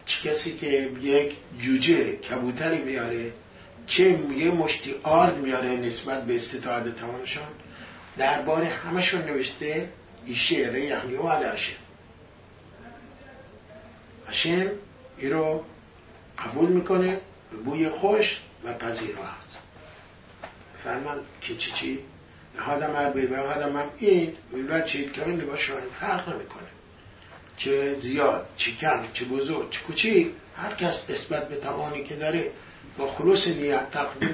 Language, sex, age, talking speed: English, male, 60-79, 120 wpm